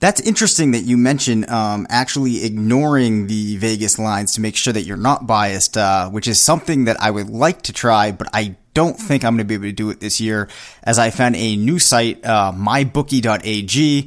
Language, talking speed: English, 210 wpm